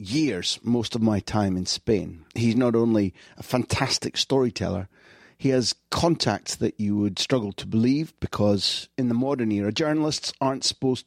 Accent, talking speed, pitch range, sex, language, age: British, 165 wpm, 100-130 Hz, male, English, 40-59